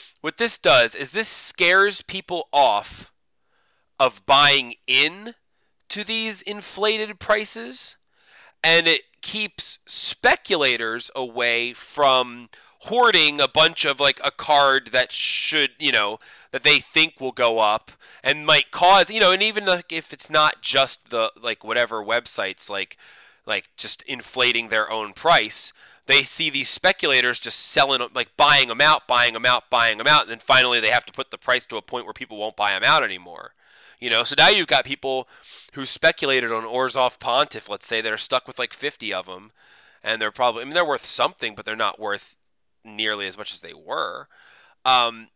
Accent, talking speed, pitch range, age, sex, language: American, 180 wpm, 120-170 Hz, 30-49, male, English